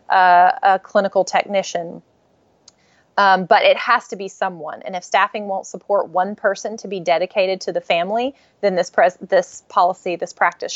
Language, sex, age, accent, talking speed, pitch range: English, female, 30-49, American, 175 wpm, 180-225 Hz